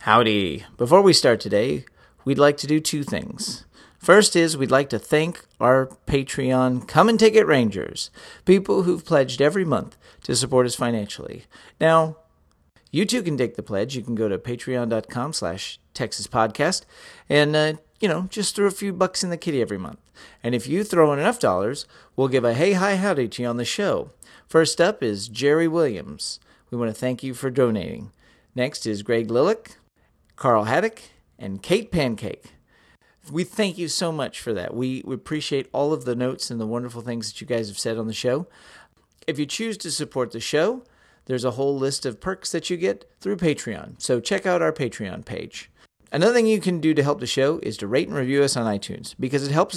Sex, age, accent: male, 40-59, American